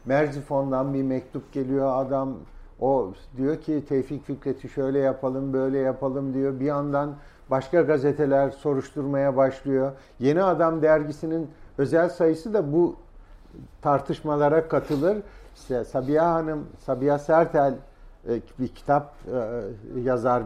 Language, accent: Turkish, native